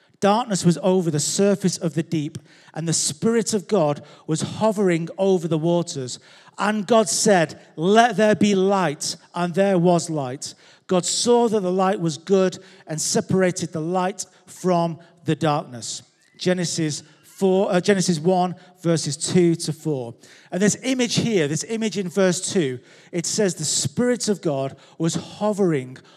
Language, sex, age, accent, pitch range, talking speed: English, male, 40-59, British, 160-195 Hz, 155 wpm